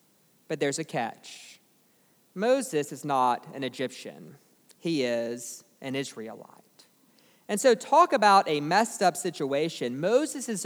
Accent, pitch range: American, 140-195 Hz